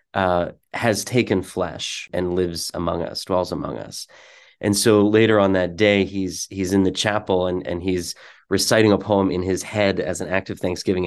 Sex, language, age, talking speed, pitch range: male, English, 30-49, 195 wpm, 90-105 Hz